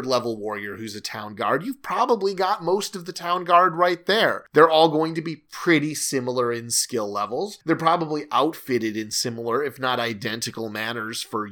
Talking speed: 190 wpm